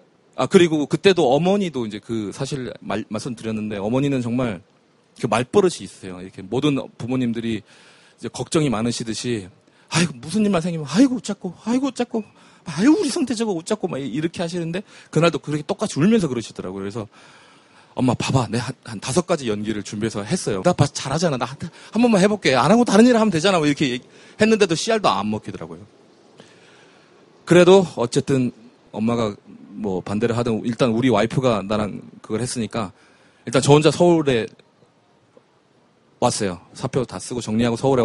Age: 30-49